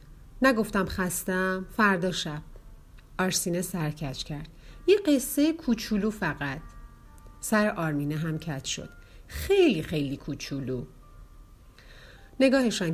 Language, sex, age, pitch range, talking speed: Persian, female, 40-59, 145-195 Hz, 95 wpm